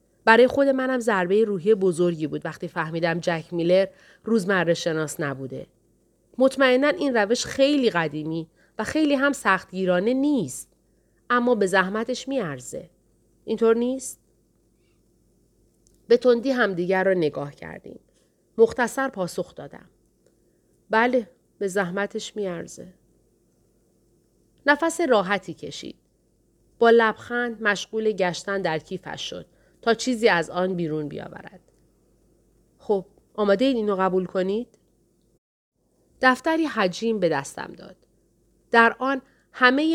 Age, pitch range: 40-59, 180-245 Hz